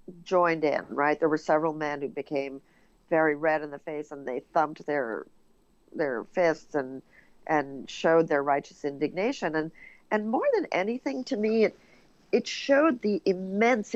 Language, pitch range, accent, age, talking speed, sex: English, 150-190 Hz, American, 50-69, 165 wpm, female